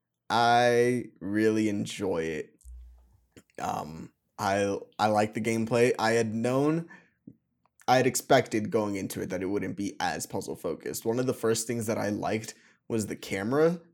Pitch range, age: 105-125 Hz, 20-39